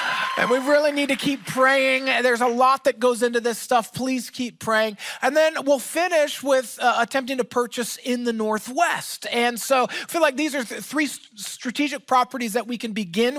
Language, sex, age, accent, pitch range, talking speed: English, male, 20-39, American, 230-290 Hz, 200 wpm